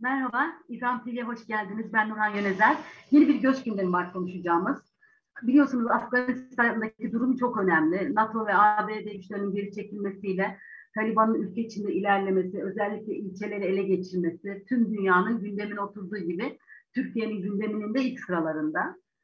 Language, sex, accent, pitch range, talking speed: Turkish, female, native, 195-250 Hz, 135 wpm